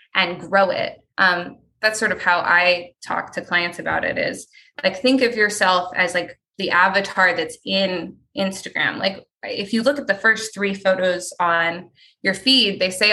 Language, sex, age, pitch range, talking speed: English, female, 20-39, 180-225 Hz, 185 wpm